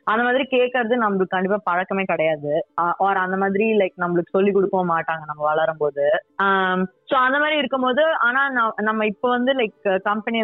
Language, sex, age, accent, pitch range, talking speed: Tamil, female, 20-39, native, 185-225 Hz, 145 wpm